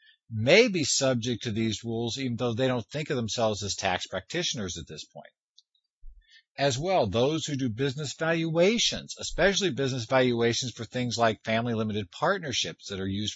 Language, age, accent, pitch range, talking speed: English, 50-69, American, 110-155 Hz, 165 wpm